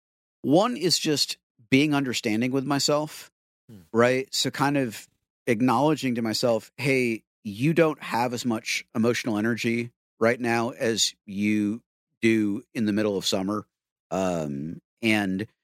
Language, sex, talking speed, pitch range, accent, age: English, male, 130 wpm, 95-130 Hz, American, 50-69